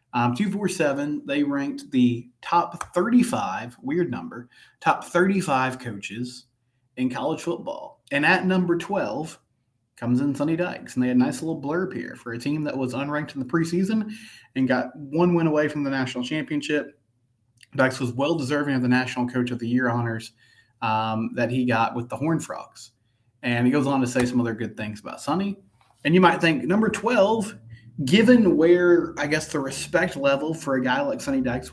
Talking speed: 190 wpm